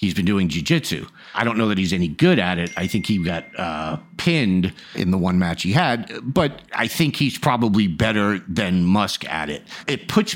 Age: 50-69